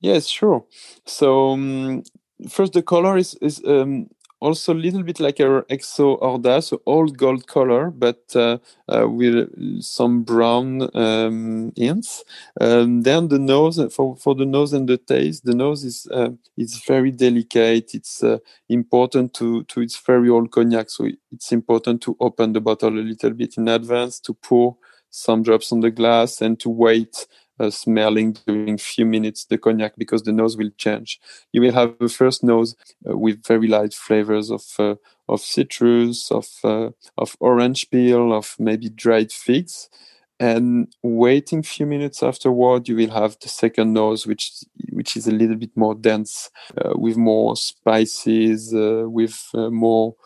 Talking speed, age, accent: 165 wpm, 20-39, French